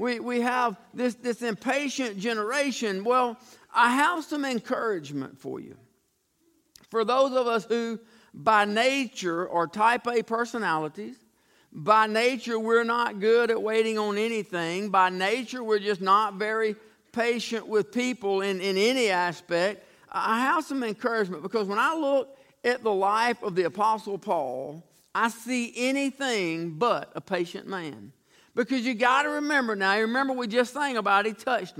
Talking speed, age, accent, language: 160 wpm, 50-69, American, English